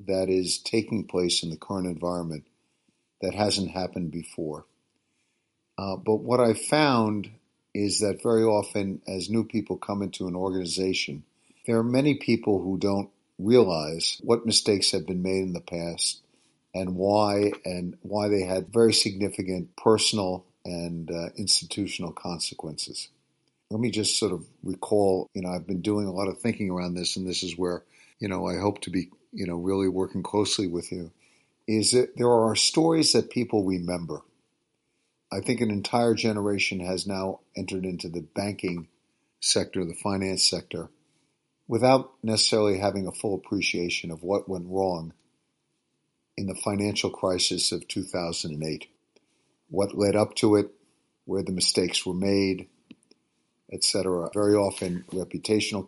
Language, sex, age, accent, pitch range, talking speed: English, male, 50-69, American, 90-105 Hz, 155 wpm